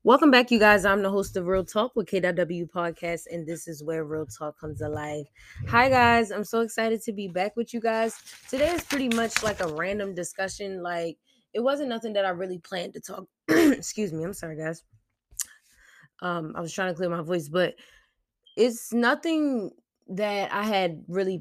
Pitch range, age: 170-205 Hz, 10-29